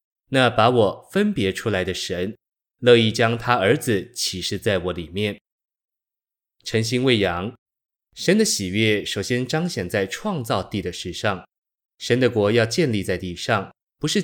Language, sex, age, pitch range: Chinese, male, 20-39, 95-125 Hz